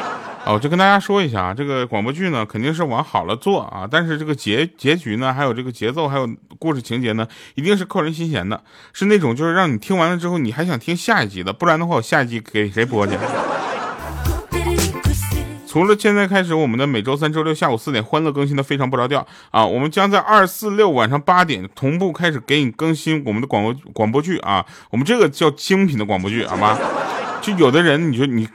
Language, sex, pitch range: Chinese, male, 110-160 Hz